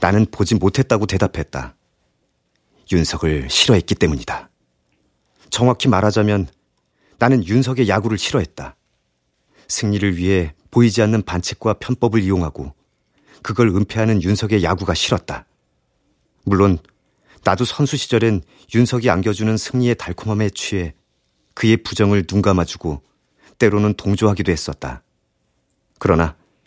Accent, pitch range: native, 85-115 Hz